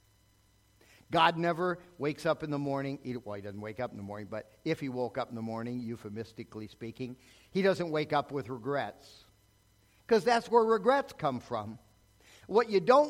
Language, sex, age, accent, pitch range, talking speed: English, male, 50-69, American, 100-170 Hz, 185 wpm